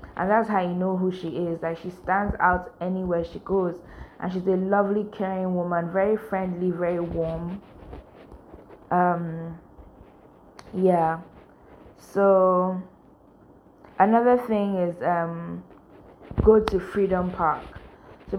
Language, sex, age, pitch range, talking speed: English, female, 10-29, 170-190 Hz, 120 wpm